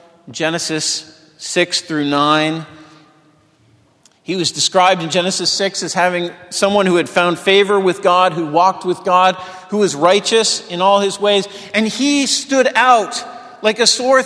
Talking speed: 155 wpm